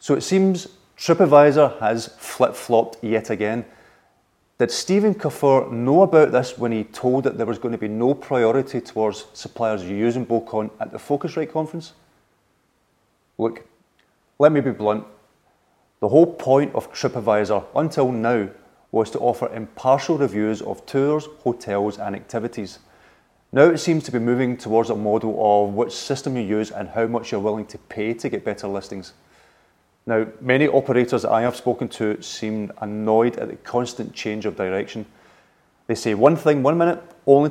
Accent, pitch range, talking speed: British, 110-135 Hz, 165 wpm